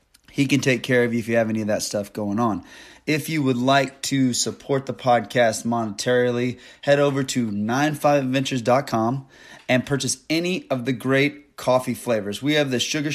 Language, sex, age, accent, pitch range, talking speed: English, male, 20-39, American, 120-145 Hz, 185 wpm